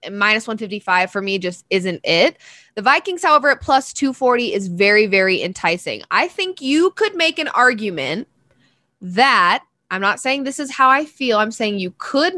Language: English